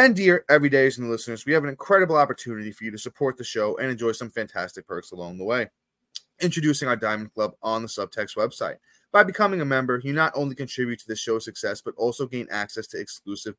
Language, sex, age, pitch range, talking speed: English, male, 20-39, 110-150 Hz, 215 wpm